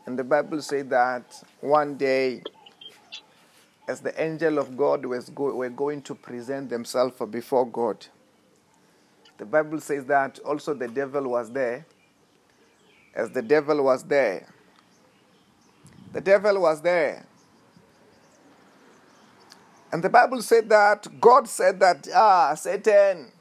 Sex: male